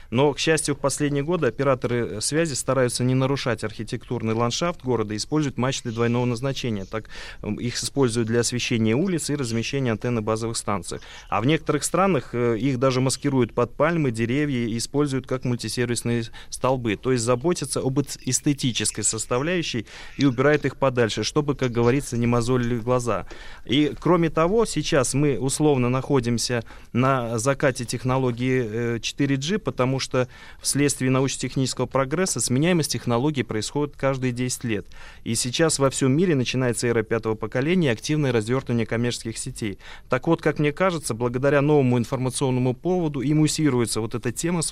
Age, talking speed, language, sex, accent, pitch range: 20-39, 150 wpm, Russian, male, native, 115-140 Hz